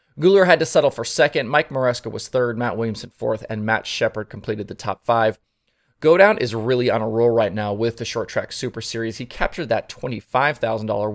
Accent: American